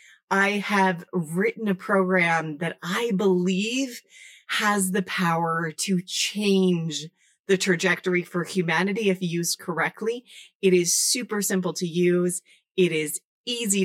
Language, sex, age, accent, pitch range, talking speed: English, female, 30-49, American, 175-200 Hz, 125 wpm